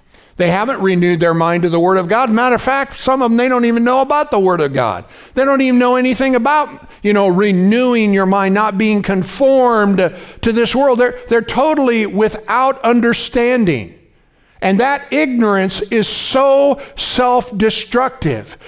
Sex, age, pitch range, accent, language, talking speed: male, 50-69, 210-275 Hz, American, English, 170 wpm